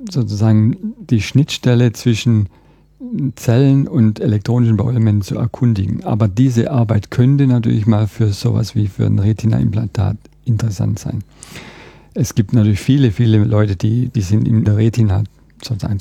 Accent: German